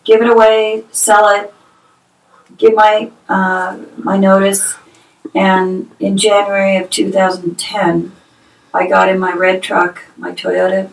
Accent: American